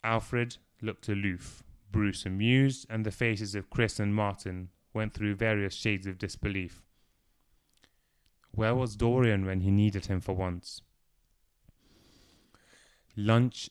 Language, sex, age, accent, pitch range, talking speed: English, male, 20-39, British, 95-110 Hz, 125 wpm